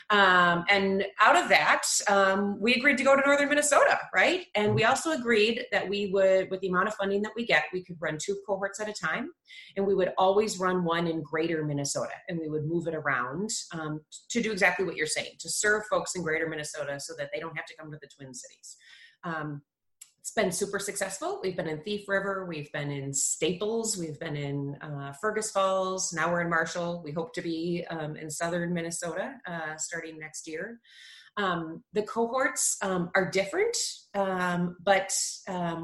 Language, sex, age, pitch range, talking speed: English, female, 30-49, 155-200 Hz, 200 wpm